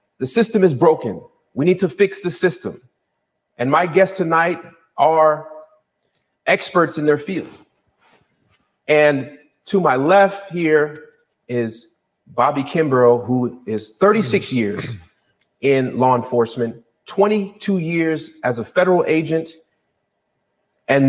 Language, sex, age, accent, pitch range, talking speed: English, male, 30-49, American, 125-165 Hz, 115 wpm